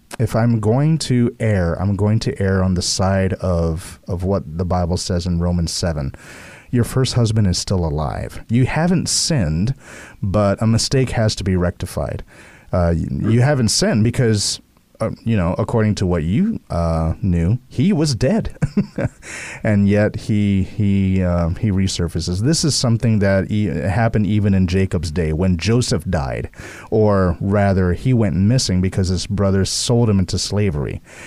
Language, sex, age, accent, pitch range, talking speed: English, male, 30-49, American, 90-115 Hz, 165 wpm